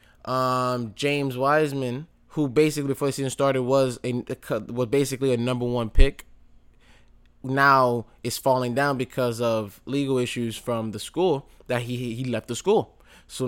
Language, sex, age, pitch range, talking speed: English, male, 20-39, 115-140 Hz, 160 wpm